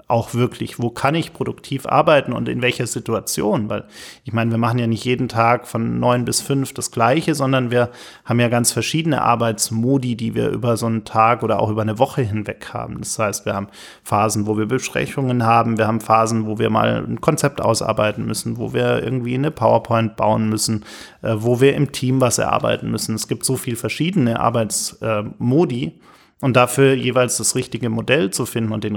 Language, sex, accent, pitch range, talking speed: German, male, German, 110-130 Hz, 195 wpm